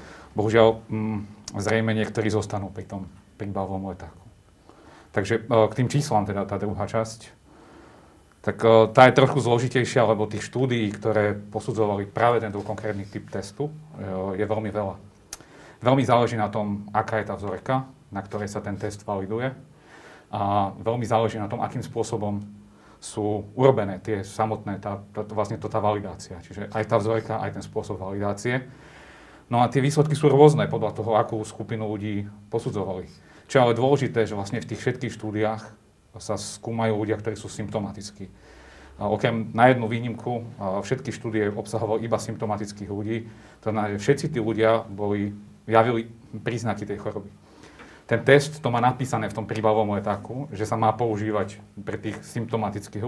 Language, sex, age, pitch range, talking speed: Slovak, male, 40-59, 105-115 Hz, 155 wpm